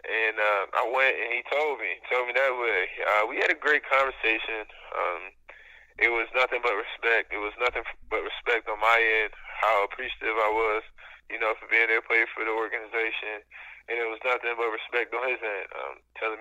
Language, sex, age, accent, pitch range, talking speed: English, male, 20-39, American, 115-130 Hz, 205 wpm